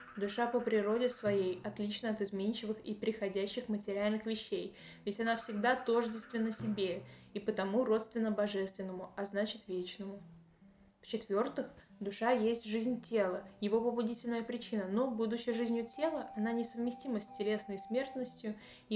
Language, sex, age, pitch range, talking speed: Russian, female, 10-29, 205-250 Hz, 130 wpm